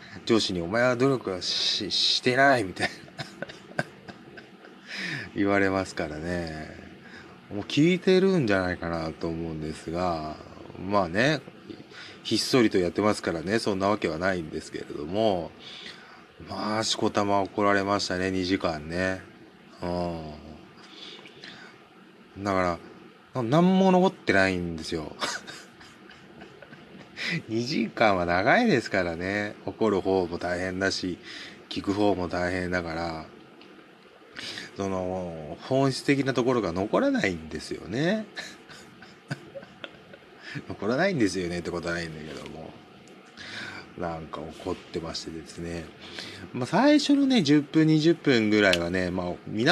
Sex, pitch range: male, 85-115 Hz